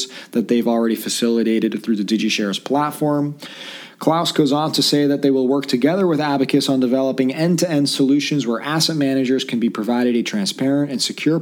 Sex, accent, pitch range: male, American, 120-145 Hz